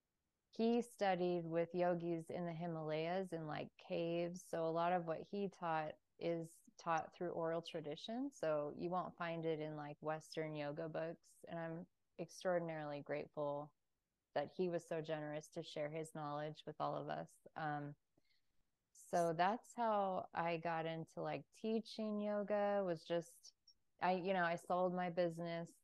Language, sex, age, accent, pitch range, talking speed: English, female, 20-39, American, 160-180 Hz, 160 wpm